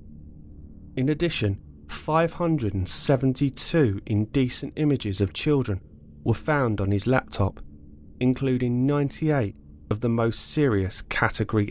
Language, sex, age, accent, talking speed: English, male, 30-49, British, 95 wpm